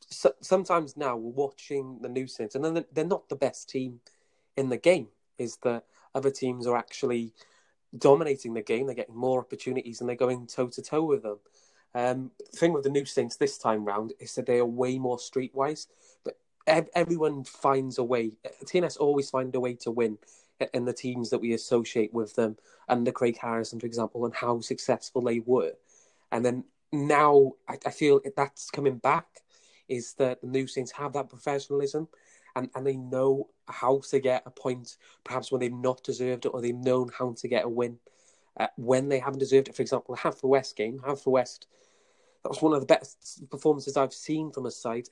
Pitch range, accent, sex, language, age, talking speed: 120-145 Hz, British, male, English, 20-39, 200 wpm